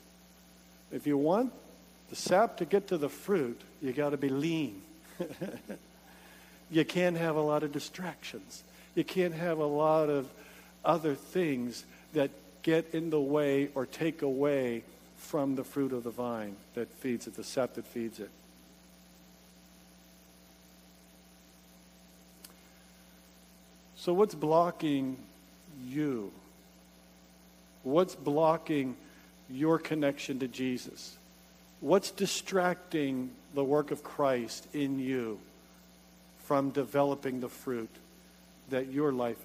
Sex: male